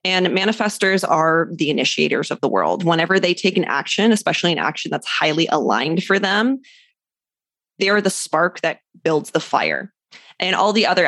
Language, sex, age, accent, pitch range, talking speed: English, female, 20-39, American, 170-220 Hz, 180 wpm